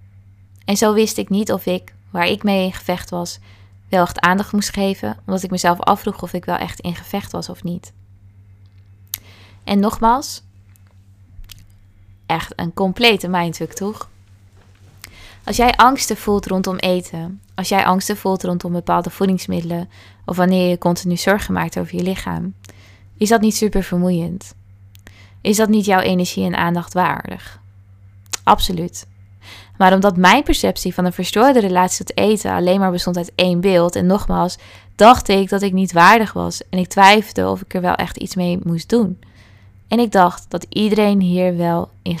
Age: 20-39